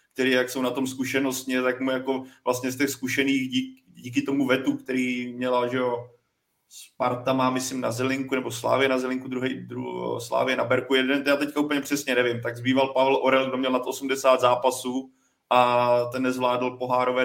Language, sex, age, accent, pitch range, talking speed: Czech, male, 20-39, native, 125-140 Hz, 190 wpm